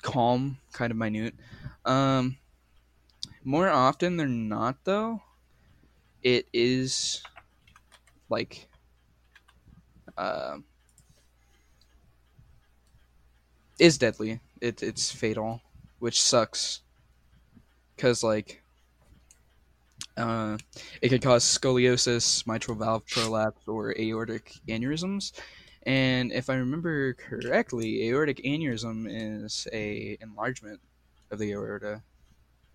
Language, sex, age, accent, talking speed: English, male, 10-29, American, 85 wpm